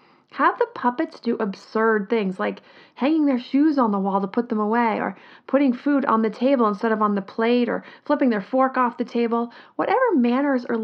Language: English